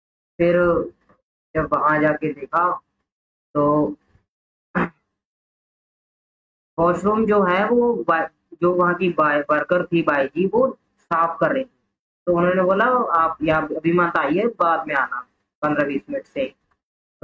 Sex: female